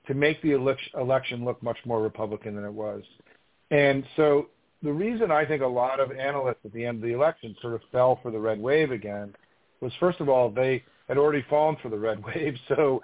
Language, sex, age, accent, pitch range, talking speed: English, male, 50-69, American, 115-145 Hz, 220 wpm